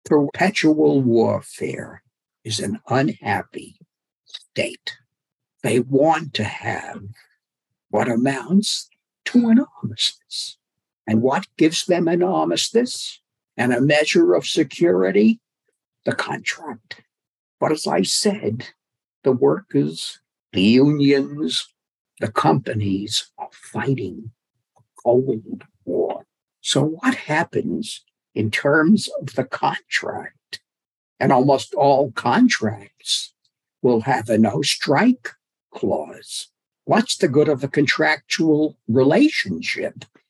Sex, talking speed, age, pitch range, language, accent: male, 100 wpm, 60-79, 125-200 Hz, English, American